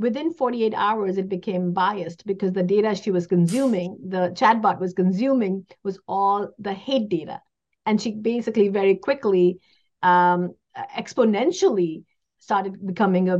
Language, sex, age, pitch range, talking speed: English, female, 50-69, 180-215 Hz, 140 wpm